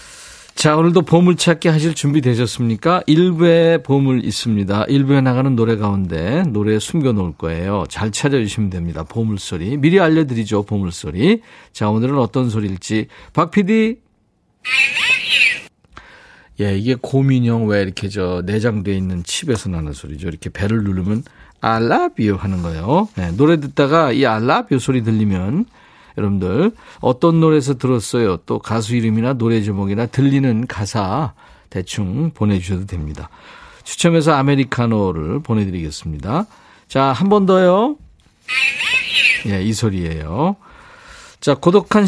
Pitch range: 100-155 Hz